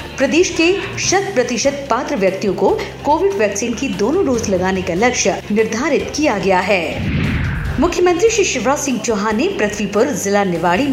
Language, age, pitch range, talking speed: Hindi, 50-69, 200-300 Hz, 155 wpm